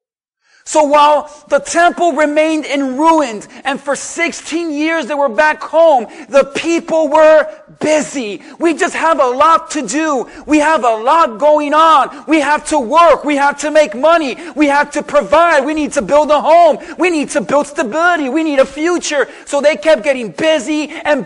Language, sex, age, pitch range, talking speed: English, male, 30-49, 285-325 Hz, 185 wpm